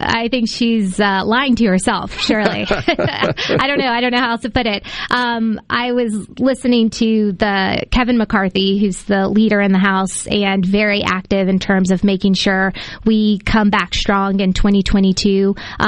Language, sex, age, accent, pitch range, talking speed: English, female, 20-39, American, 195-225 Hz, 180 wpm